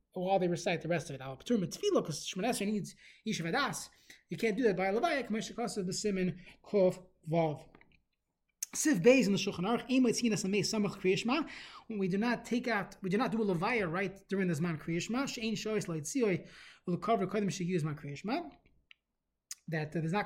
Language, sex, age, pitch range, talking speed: English, male, 20-39, 175-230 Hz, 200 wpm